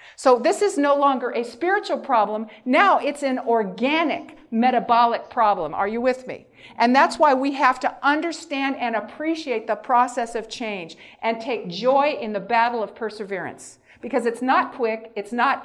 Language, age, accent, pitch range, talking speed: English, 50-69, American, 220-270 Hz, 175 wpm